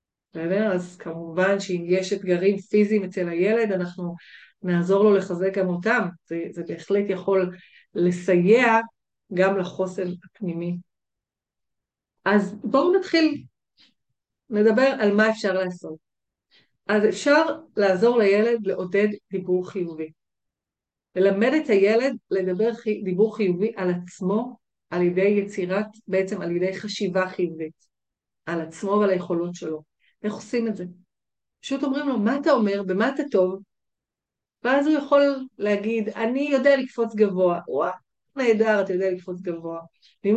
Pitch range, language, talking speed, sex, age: 185-220 Hz, Hebrew, 130 wpm, female, 40-59